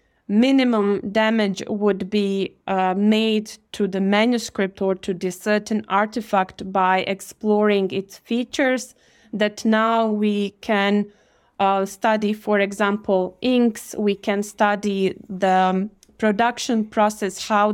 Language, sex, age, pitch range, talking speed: English, female, 20-39, 195-215 Hz, 115 wpm